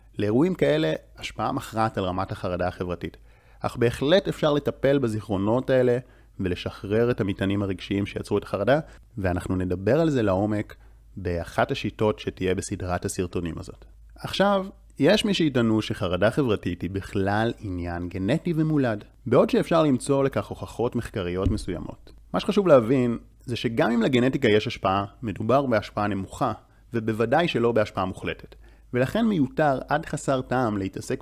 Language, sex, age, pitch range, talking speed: Hebrew, male, 30-49, 100-135 Hz, 140 wpm